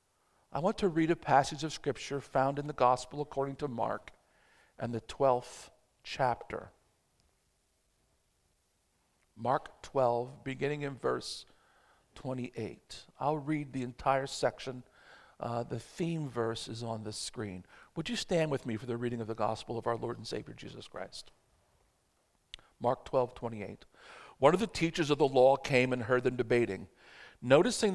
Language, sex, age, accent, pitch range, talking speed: English, male, 50-69, American, 115-145 Hz, 155 wpm